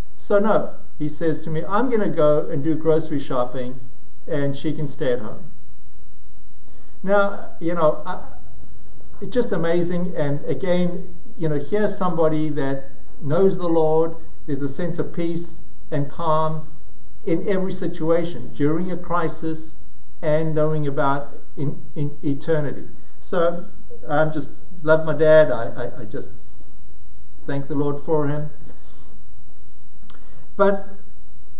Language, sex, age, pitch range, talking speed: English, male, 60-79, 130-175 Hz, 135 wpm